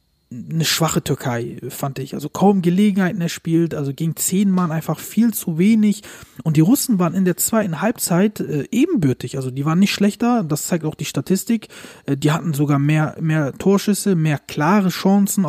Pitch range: 160-205 Hz